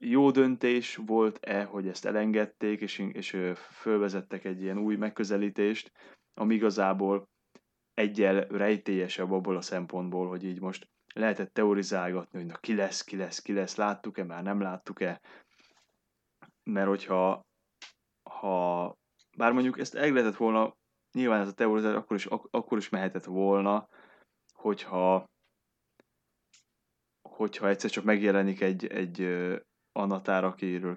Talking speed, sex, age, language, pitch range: 125 wpm, male, 20-39, Hungarian, 95-105 Hz